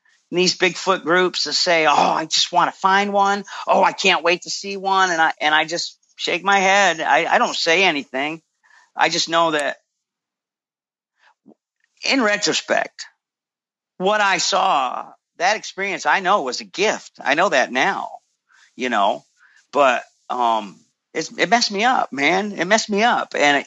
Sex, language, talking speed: male, English, 170 wpm